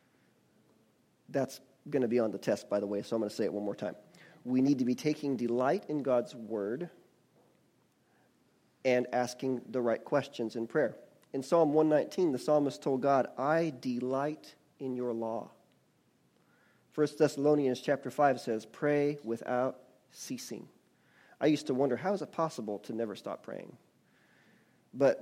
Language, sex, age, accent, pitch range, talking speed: English, male, 40-59, American, 120-150 Hz, 160 wpm